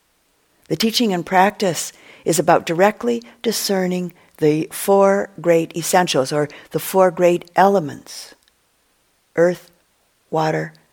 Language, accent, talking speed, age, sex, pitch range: English, American, 105 wpm, 50-69, female, 155-195 Hz